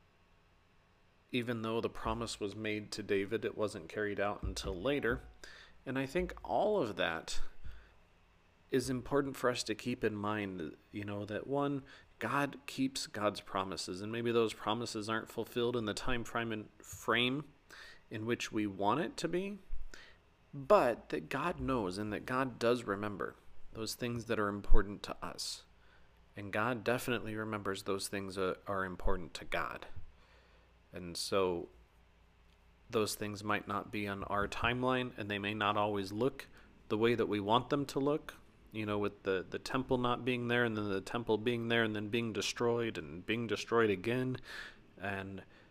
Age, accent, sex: 30-49, American, male